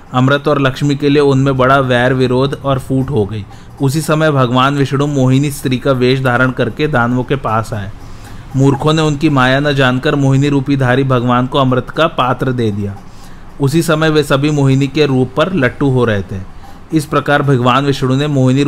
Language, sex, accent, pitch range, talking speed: Hindi, male, native, 125-145 Hz, 195 wpm